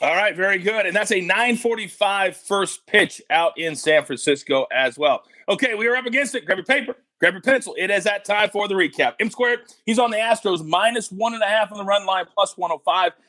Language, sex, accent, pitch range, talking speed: English, male, American, 180-230 Hz, 230 wpm